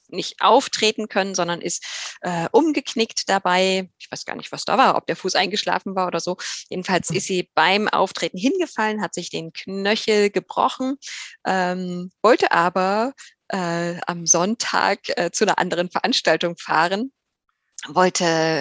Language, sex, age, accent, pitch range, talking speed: German, female, 20-39, German, 165-205 Hz, 150 wpm